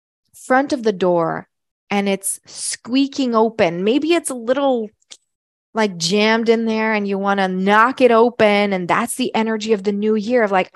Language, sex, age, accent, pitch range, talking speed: English, female, 20-39, American, 190-235 Hz, 185 wpm